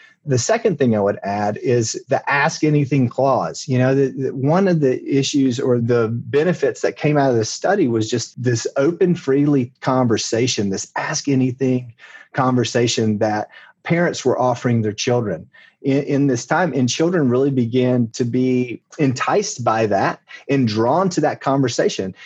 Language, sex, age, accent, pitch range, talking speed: English, male, 30-49, American, 115-145 Hz, 165 wpm